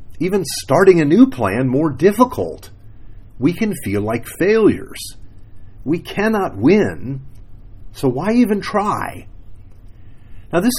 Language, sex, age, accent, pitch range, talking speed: English, male, 40-59, American, 100-135 Hz, 115 wpm